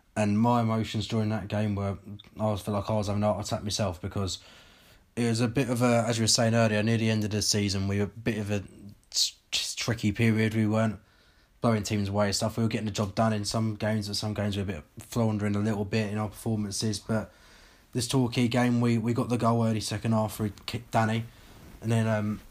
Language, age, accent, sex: English, 20-39, British, male